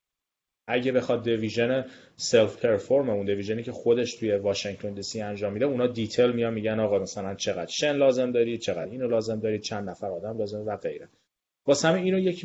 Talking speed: 175 wpm